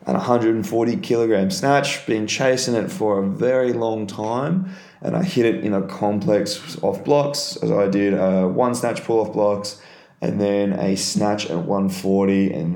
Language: English